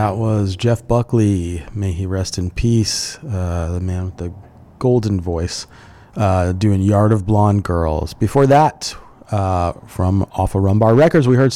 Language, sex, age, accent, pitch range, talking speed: English, male, 30-49, American, 100-125 Hz, 160 wpm